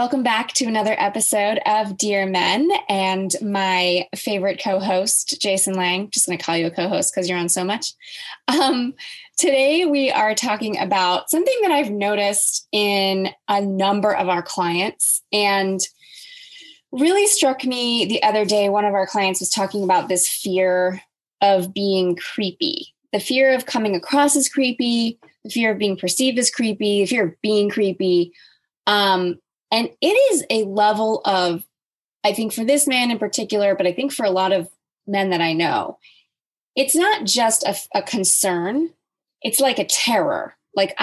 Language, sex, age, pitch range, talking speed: English, female, 20-39, 190-265 Hz, 170 wpm